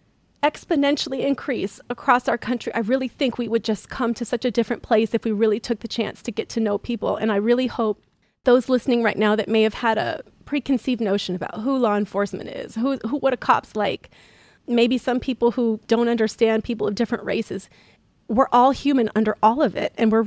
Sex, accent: female, American